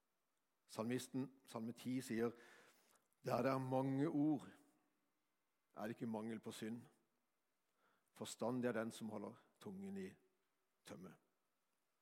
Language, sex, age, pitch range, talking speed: English, male, 60-79, 120-155 Hz, 105 wpm